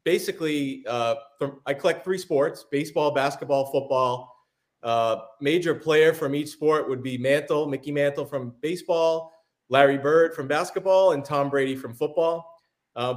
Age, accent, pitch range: 30-49, American, 130-160 Hz